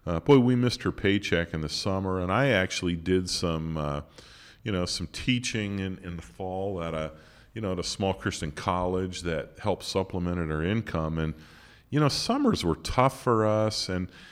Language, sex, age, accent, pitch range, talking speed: English, male, 40-59, American, 90-115 Hz, 195 wpm